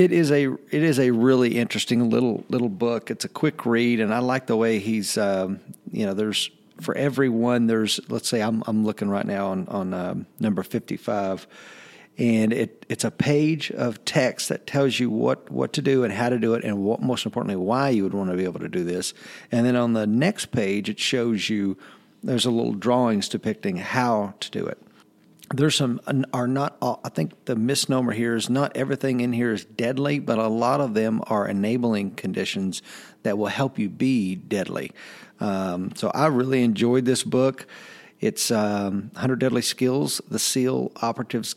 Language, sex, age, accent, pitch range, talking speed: English, male, 50-69, American, 105-130 Hz, 200 wpm